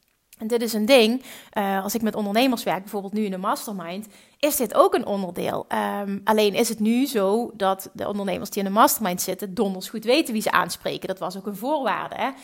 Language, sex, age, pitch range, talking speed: Dutch, female, 30-49, 195-255 Hz, 215 wpm